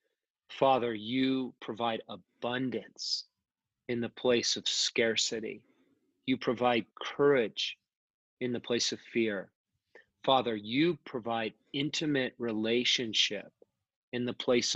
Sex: male